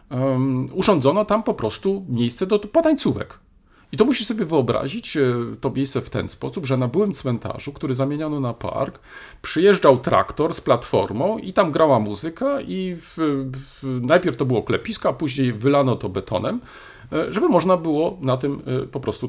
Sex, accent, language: male, native, Polish